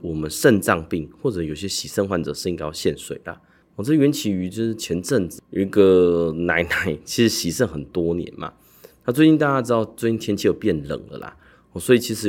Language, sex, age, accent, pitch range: Chinese, male, 20-39, native, 85-110 Hz